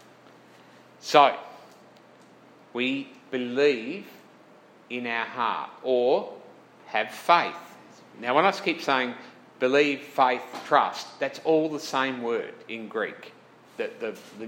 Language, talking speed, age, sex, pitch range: English, 110 wpm, 50-69, male, 125-180 Hz